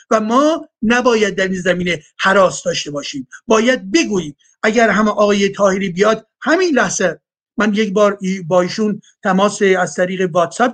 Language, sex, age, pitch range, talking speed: Persian, male, 50-69, 185-250 Hz, 145 wpm